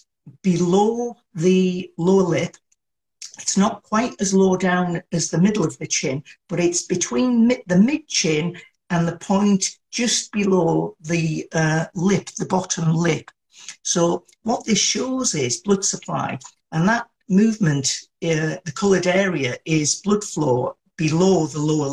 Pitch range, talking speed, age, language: 160-205 Hz, 145 wpm, 50-69, English